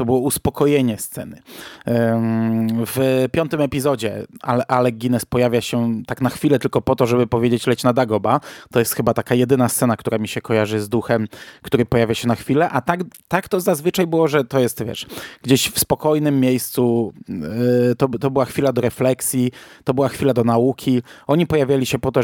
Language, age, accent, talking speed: Polish, 20-39, native, 185 wpm